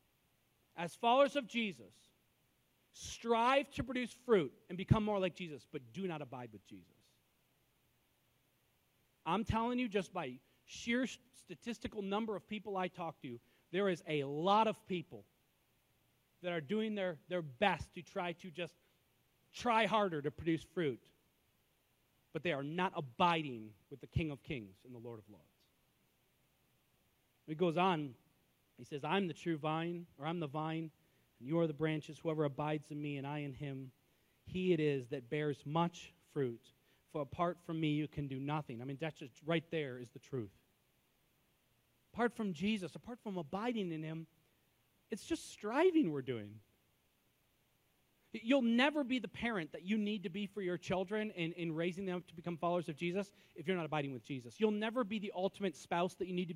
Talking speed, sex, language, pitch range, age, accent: 180 wpm, male, English, 145-210 Hz, 40-59, American